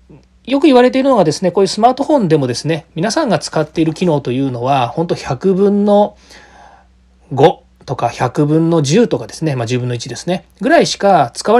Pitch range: 135-210 Hz